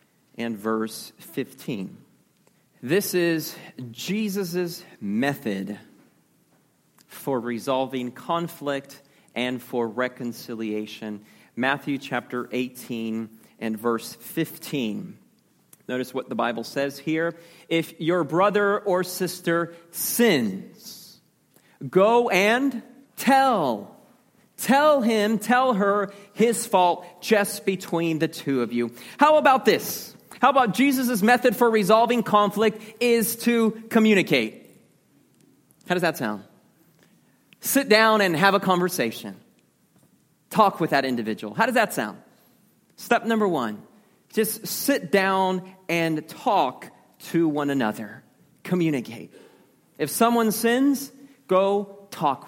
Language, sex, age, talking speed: English, male, 40-59, 105 wpm